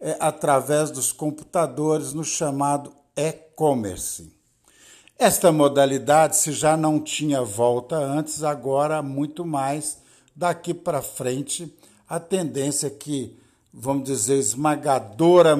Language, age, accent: Portuguese, 60-79, Brazilian